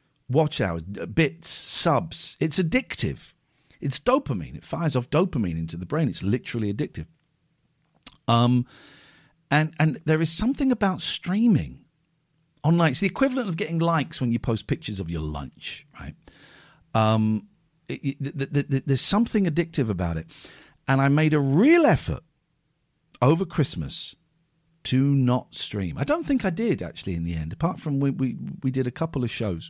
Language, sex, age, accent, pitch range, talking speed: English, male, 50-69, British, 130-170 Hz, 165 wpm